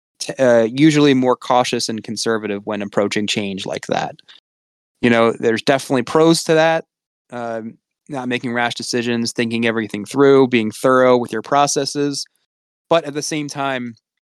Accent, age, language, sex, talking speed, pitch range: American, 20-39, English, male, 155 wpm, 115-145 Hz